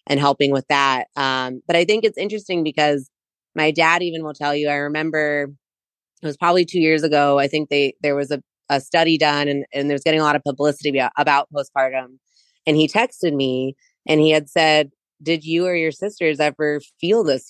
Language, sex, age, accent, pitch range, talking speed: English, female, 20-39, American, 145-165 Hz, 210 wpm